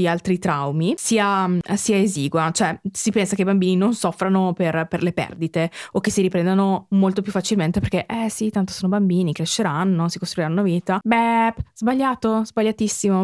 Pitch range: 175-205 Hz